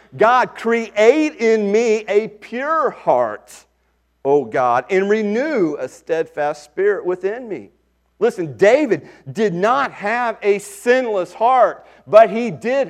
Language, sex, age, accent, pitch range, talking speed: English, male, 40-59, American, 140-225 Hz, 125 wpm